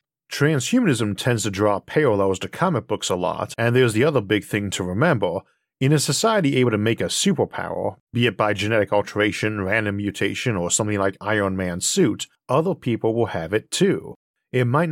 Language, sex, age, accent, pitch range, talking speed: English, male, 50-69, American, 100-130 Hz, 190 wpm